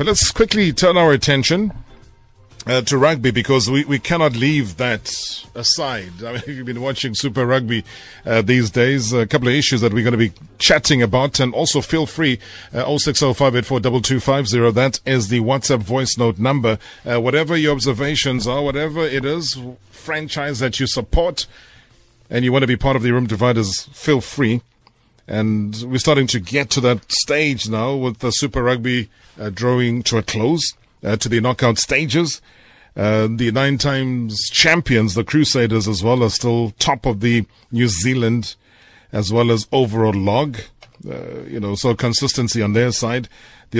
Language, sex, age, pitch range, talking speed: English, male, 30-49, 115-140 Hz, 175 wpm